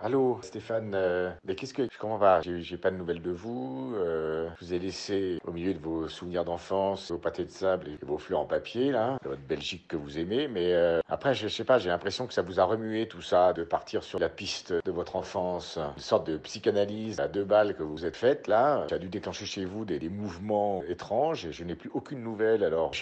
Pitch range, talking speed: 90-115 Hz, 255 wpm